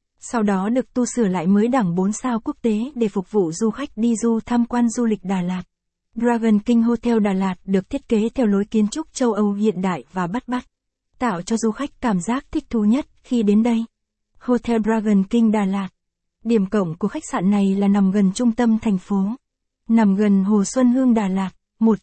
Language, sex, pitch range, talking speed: Vietnamese, female, 200-240 Hz, 225 wpm